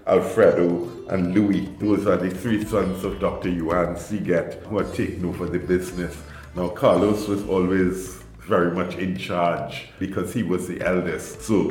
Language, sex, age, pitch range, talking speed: English, male, 50-69, 90-105 Hz, 165 wpm